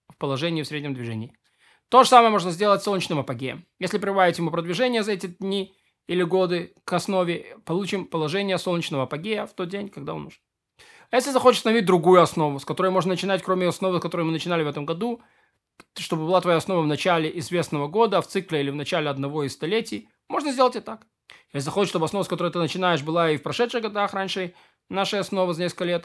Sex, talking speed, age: male, 205 wpm, 20-39